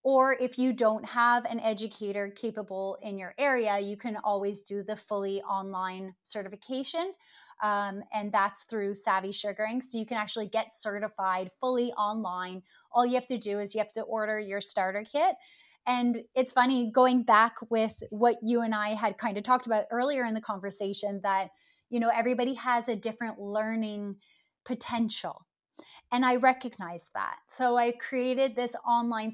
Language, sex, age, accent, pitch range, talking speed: English, female, 10-29, American, 205-240 Hz, 170 wpm